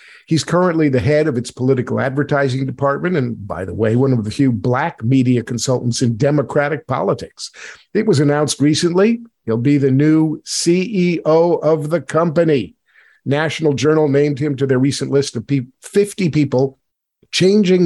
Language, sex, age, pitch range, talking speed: English, male, 50-69, 130-170 Hz, 160 wpm